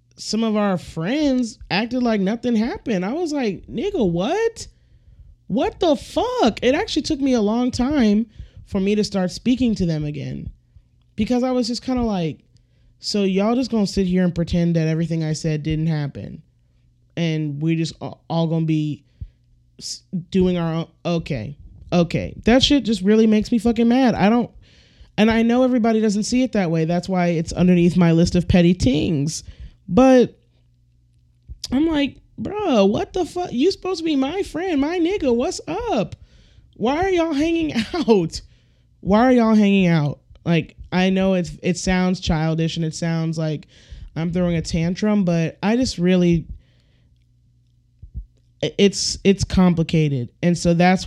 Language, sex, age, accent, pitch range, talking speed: English, male, 20-39, American, 155-230 Hz, 165 wpm